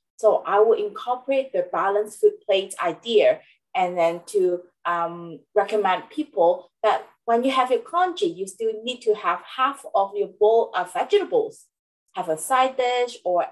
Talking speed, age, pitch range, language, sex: 165 wpm, 30-49, 185-270 Hz, English, female